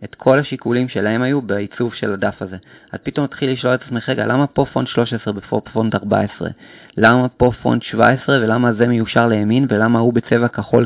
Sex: male